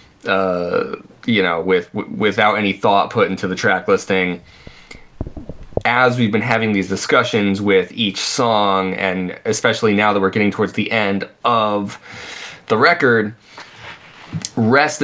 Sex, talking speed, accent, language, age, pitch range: male, 140 wpm, American, English, 20-39, 95-115 Hz